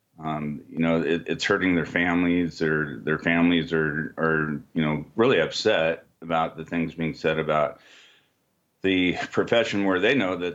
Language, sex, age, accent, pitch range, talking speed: English, male, 40-59, American, 80-95 Hz, 165 wpm